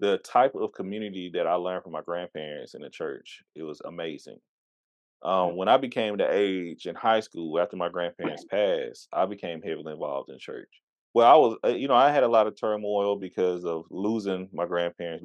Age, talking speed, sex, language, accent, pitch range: 20-39, 200 wpm, male, English, American, 85-110 Hz